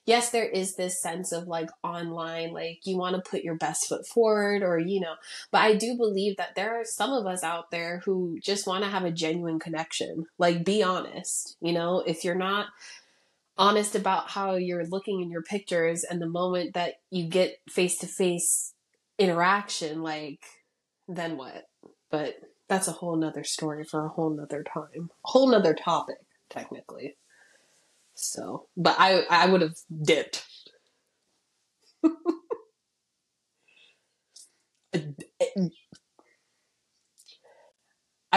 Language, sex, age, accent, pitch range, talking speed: English, female, 20-39, American, 170-225 Hz, 140 wpm